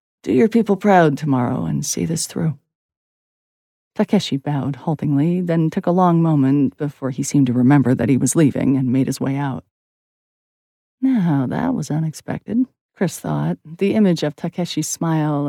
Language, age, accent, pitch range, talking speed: English, 40-59, American, 140-190 Hz, 165 wpm